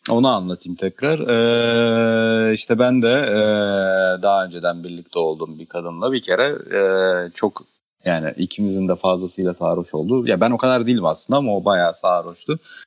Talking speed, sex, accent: 165 wpm, male, native